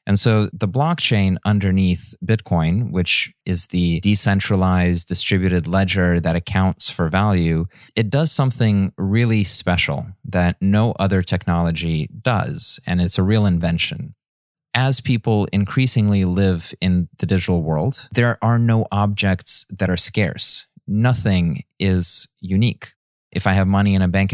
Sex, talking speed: male, 140 wpm